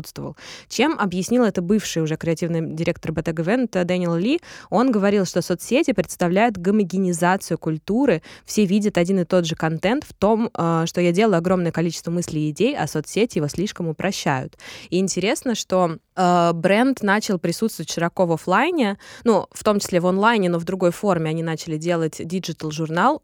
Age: 20-39